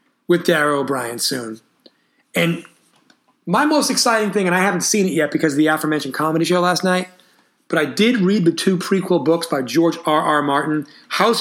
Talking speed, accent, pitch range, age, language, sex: 190 wpm, American, 155-200 Hz, 40-59, English, male